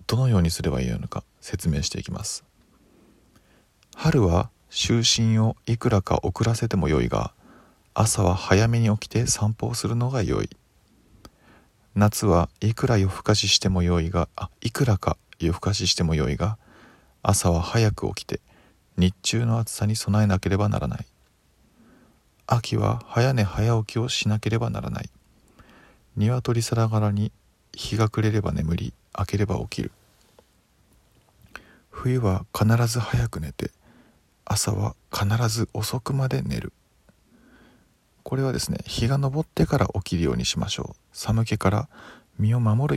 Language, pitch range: Japanese, 95-115 Hz